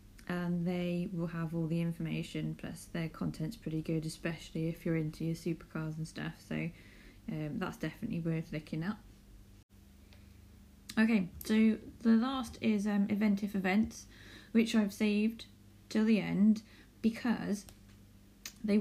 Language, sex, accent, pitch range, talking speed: English, female, British, 145-200 Hz, 135 wpm